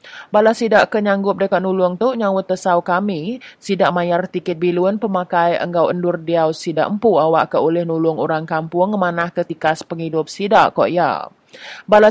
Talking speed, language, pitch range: 160 wpm, English, 175-200 Hz